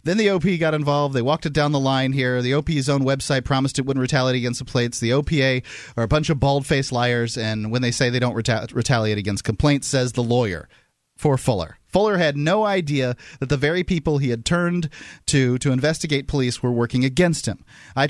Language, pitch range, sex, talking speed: English, 110-140 Hz, male, 220 wpm